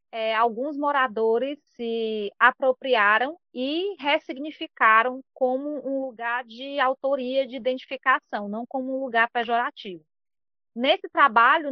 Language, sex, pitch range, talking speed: Portuguese, female, 235-280 Hz, 110 wpm